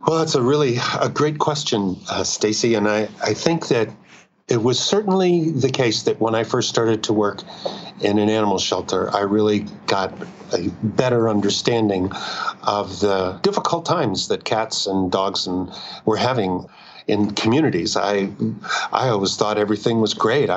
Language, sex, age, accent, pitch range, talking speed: English, male, 50-69, American, 100-120 Hz, 165 wpm